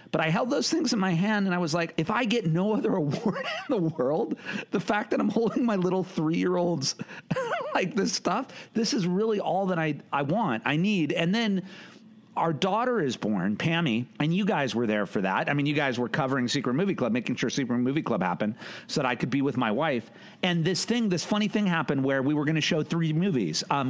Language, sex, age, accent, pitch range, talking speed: English, male, 50-69, American, 140-200 Hz, 240 wpm